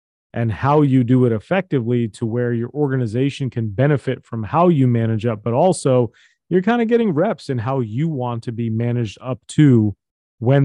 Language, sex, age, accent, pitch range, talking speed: English, male, 30-49, American, 115-135 Hz, 190 wpm